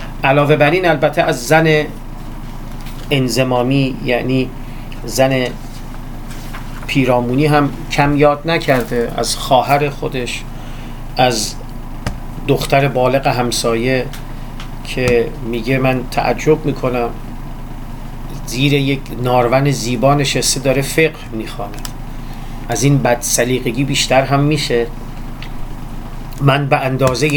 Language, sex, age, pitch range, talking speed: Persian, male, 40-59, 125-145 Hz, 90 wpm